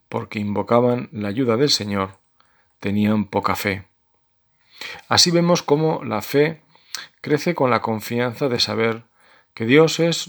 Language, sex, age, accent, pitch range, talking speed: Spanish, male, 40-59, Spanish, 105-145 Hz, 135 wpm